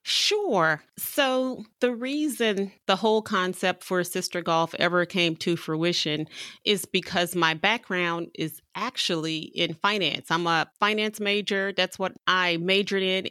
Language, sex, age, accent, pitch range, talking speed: English, female, 30-49, American, 160-190 Hz, 140 wpm